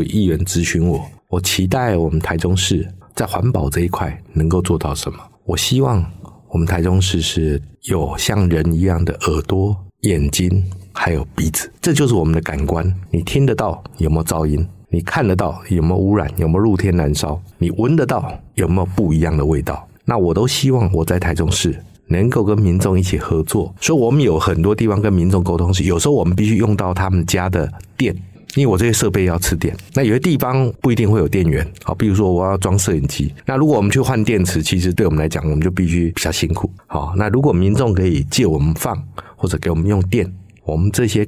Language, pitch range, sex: Chinese, 85-100 Hz, male